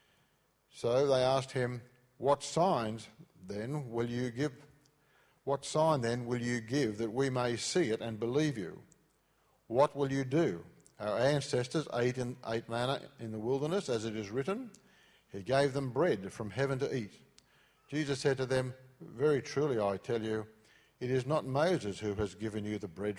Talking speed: 175 wpm